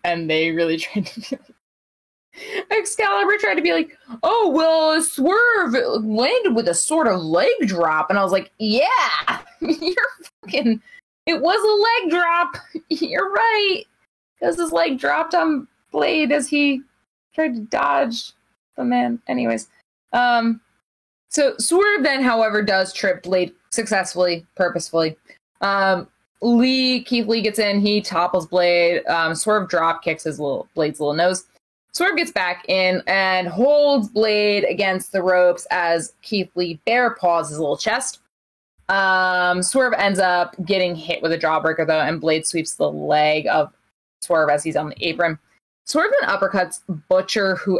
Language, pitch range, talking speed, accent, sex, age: English, 175-280 Hz, 155 wpm, American, female, 20-39